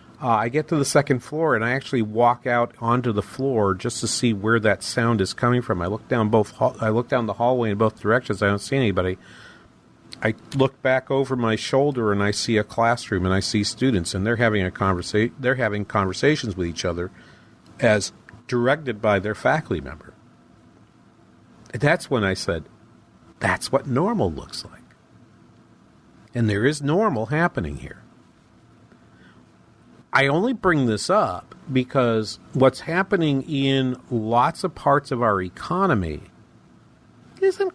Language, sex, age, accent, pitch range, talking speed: English, male, 50-69, American, 105-135 Hz, 165 wpm